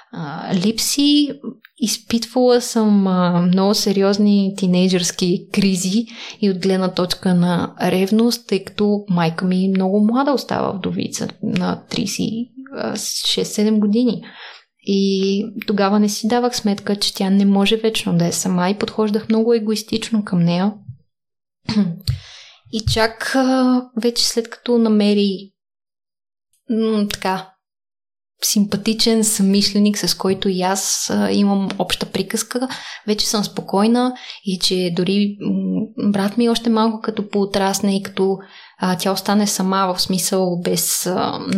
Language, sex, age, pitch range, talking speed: Bulgarian, female, 20-39, 190-225 Hz, 125 wpm